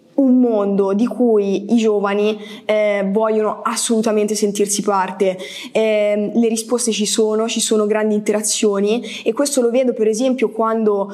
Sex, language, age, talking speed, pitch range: female, Italian, 20-39, 145 wpm, 205-230 Hz